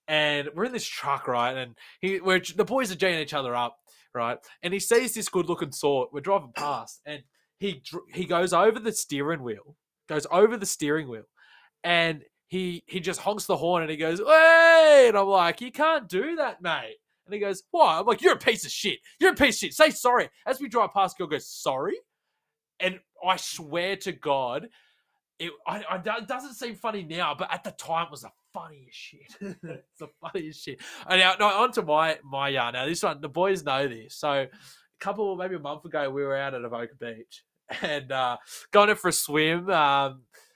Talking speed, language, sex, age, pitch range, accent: 215 wpm, English, male, 20-39, 140-195 Hz, Australian